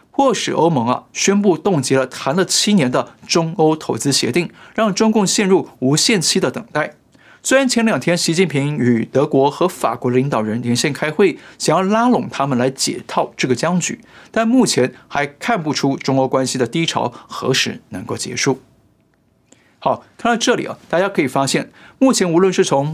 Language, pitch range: Chinese, 135-200 Hz